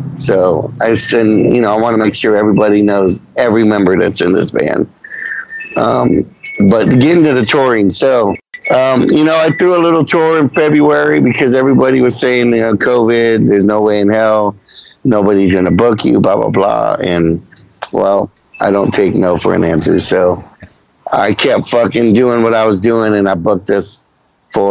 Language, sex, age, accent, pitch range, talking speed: English, male, 50-69, American, 95-120 Hz, 185 wpm